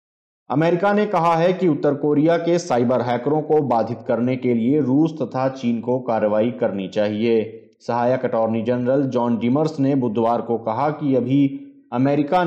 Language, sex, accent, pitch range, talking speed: Hindi, male, native, 115-145 Hz, 165 wpm